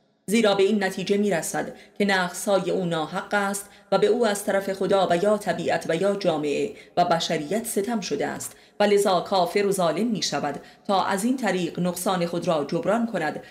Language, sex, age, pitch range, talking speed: Persian, female, 30-49, 165-205 Hz, 185 wpm